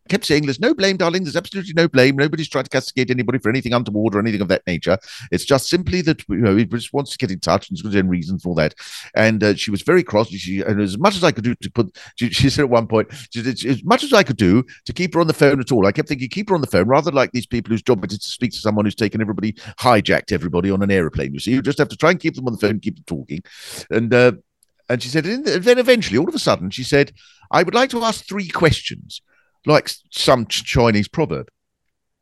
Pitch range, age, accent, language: 95-145 Hz, 50-69, British, English